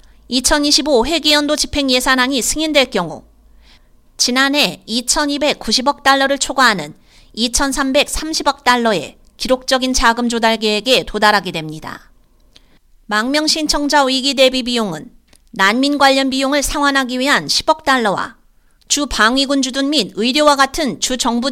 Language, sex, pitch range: Korean, female, 225-290 Hz